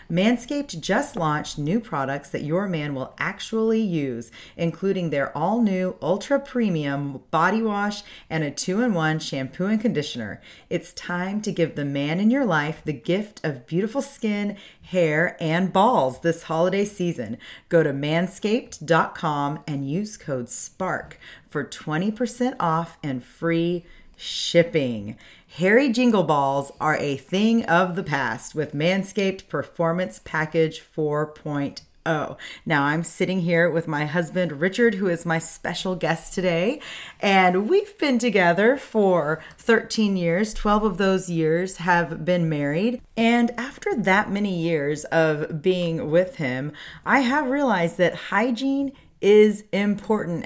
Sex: female